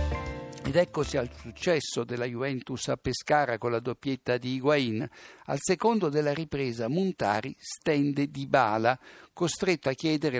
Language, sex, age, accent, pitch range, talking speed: Italian, male, 60-79, native, 120-160 Hz, 135 wpm